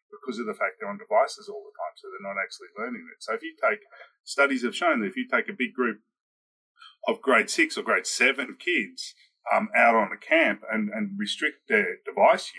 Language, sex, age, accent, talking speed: English, male, 40-59, Australian, 225 wpm